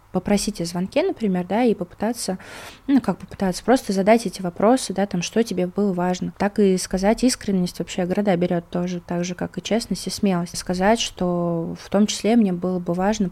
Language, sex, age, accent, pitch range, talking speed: Russian, female, 20-39, native, 175-205 Hz, 195 wpm